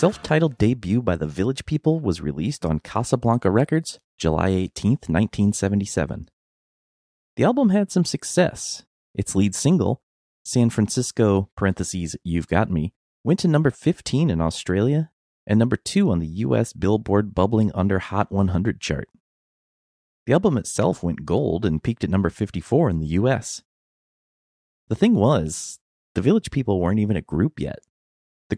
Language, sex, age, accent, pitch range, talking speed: English, male, 30-49, American, 85-120 Hz, 145 wpm